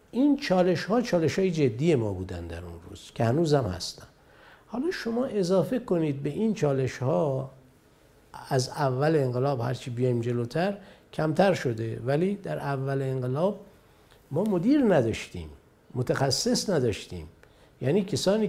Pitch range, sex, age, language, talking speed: 120-170 Hz, male, 50-69, Persian, 125 wpm